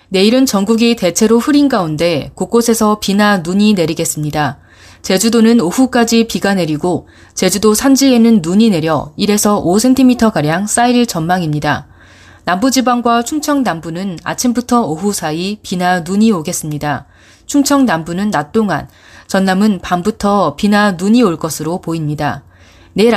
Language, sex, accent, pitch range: Korean, female, native, 165-230 Hz